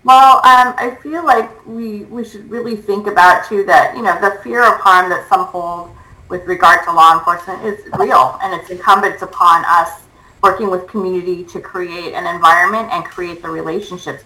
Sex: female